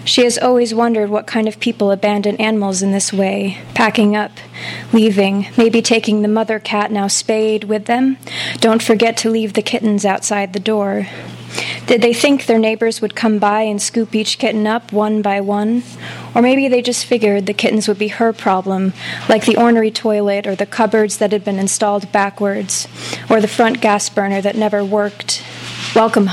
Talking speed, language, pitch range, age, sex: 185 wpm, English, 200-230 Hz, 20-39, female